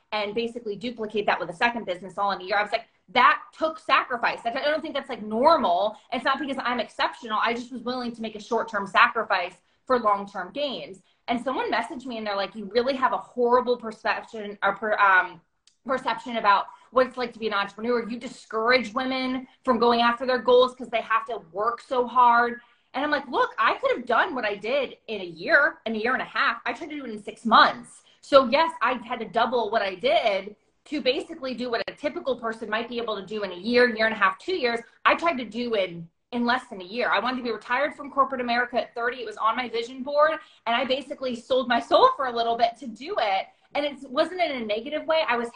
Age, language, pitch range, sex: 20-39, English, 220-270 Hz, female